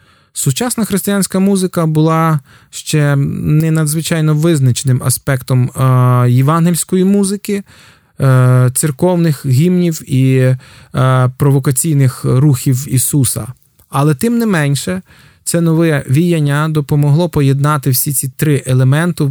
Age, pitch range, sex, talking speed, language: 20-39, 135-170 Hz, male, 105 wpm, Ukrainian